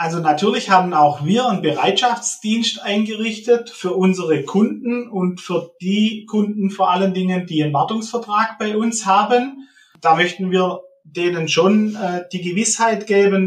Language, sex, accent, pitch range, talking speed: German, male, German, 160-225 Hz, 145 wpm